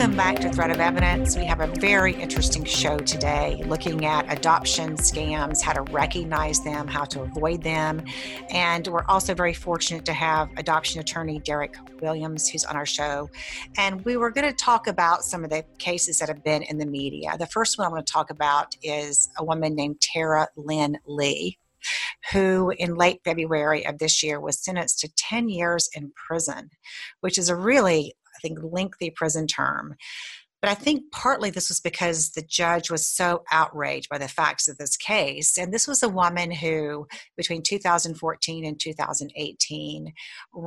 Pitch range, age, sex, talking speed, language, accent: 150-175 Hz, 40-59, female, 180 wpm, English, American